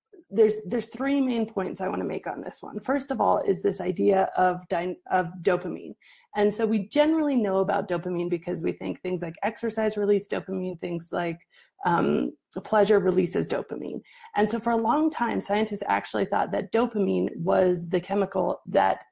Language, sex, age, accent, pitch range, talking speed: English, female, 30-49, American, 185-230 Hz, 180 wpm